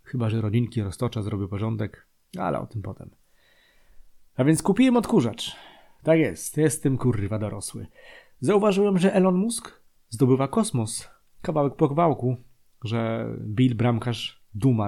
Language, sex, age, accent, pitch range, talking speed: Polish, male, 30-49, native, 110-145 Hz, 130 wpm